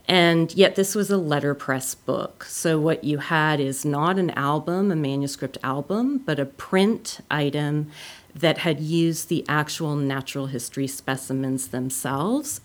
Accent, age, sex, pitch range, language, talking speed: American, 40-59, female, 145-170 Hz, English, 145 wpm